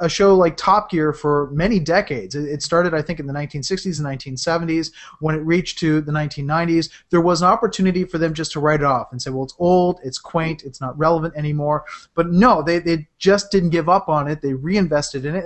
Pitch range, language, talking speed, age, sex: 155-195 Hz, English, 230 wpm, 30-49, male